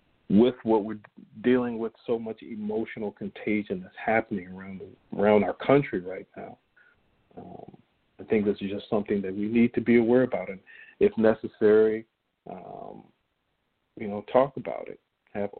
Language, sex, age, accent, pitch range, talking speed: English, male, 40-59, American, 105-125 Hz, 160 wpm